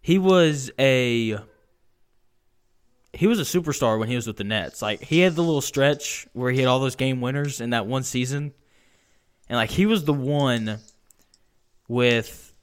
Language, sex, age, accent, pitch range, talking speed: English, male, 10-29, American, 120-150 Hz, 175 wpm